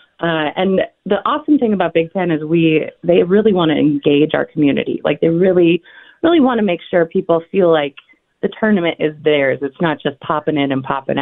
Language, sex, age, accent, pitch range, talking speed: English, female, 30-49, American, 155-205 Hz, 210 wpm